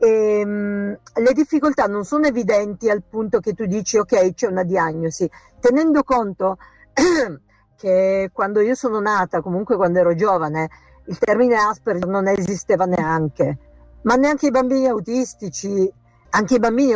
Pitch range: 180-230 Hz